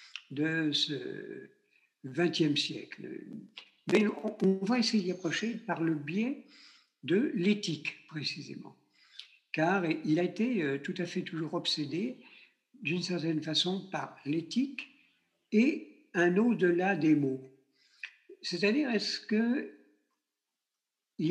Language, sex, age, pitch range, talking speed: French, male, 60-79, 155-220 Hz, 105 wpm